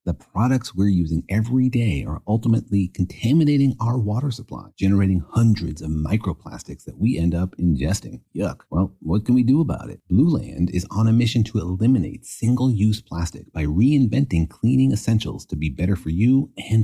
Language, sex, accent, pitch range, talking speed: English, male, American, 90-120 Hz, 180 wpm